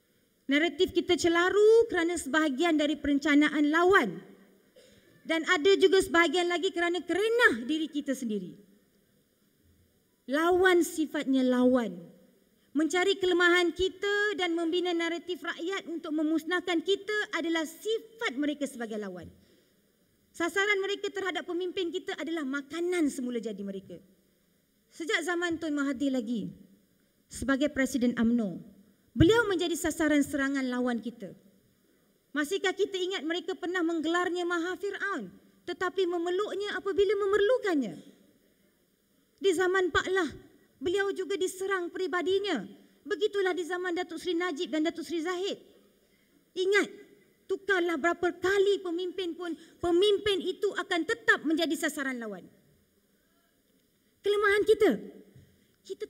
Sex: female